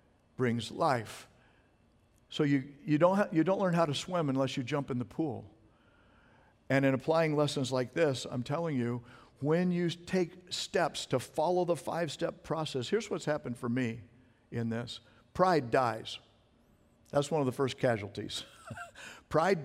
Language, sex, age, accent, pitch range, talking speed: English, male, 60-79, American, 115-150 Hz, 160 wpm